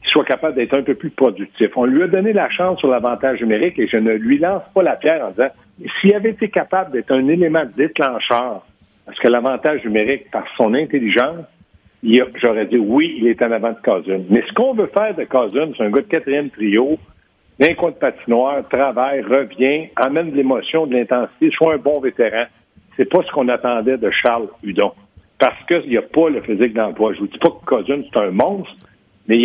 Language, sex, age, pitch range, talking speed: French, male, 60-79, 115-160 Hz, 215 wpm